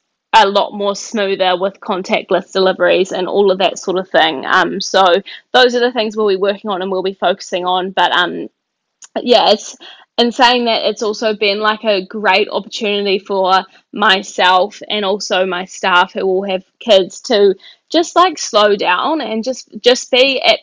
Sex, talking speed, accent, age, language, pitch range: female, 180 wpm, Australian, 20-39, English, 190-220 Hz